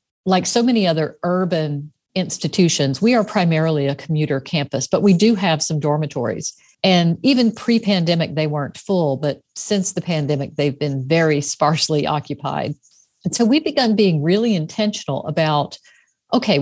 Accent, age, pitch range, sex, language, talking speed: American, 50-69, 150-200 Hz, female, English, 150 wpm